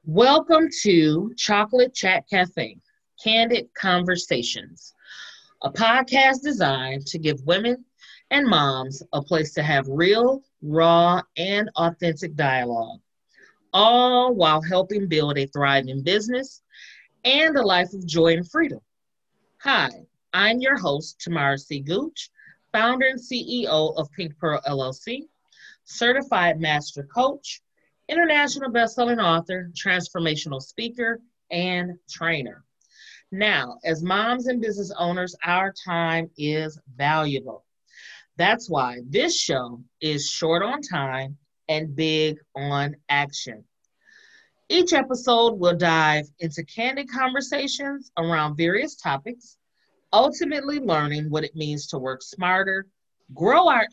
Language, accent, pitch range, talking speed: English, American, 155-245 Hz, 115 wpm